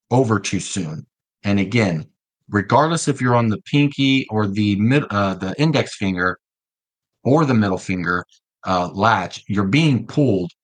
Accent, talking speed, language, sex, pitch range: American, 150 wpm, English, male, 95-120 Hz